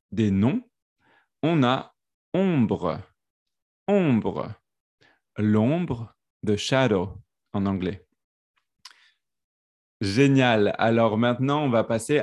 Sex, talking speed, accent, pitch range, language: male, 115 wpm, French, 105-130 Hz, French